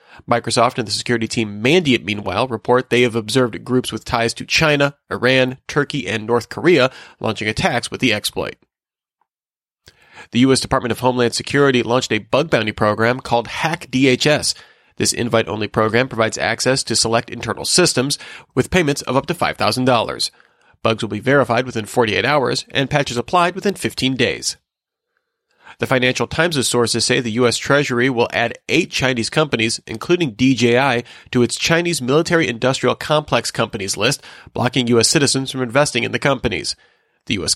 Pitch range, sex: 115-140 Hz, male